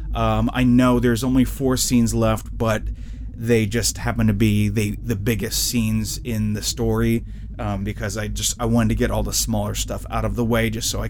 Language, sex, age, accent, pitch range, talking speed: English, male, 30-49, American, 105-120 Hz, 215 wpm